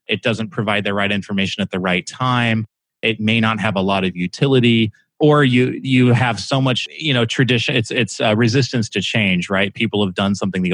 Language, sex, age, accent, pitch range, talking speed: English, male, 30-49, American, 100-120 Hz, 220 wpm